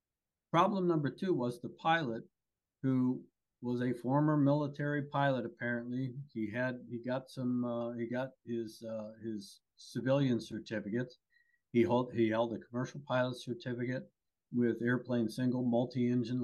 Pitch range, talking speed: 110-135 Hz, 140 wpm